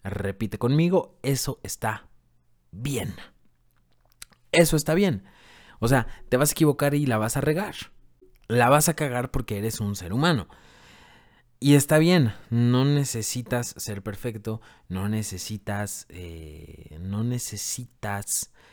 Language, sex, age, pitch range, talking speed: Spanish, male, 30-49, 100-125 Hz, 120 wpm